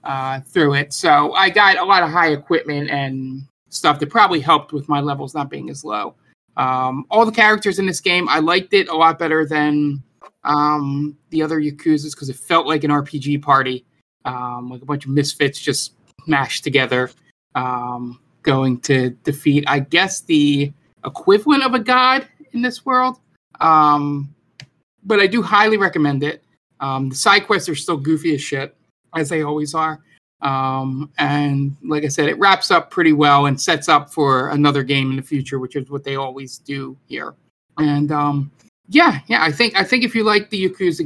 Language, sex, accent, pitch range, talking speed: English, male, American, 135-165 Hz, 190 wpm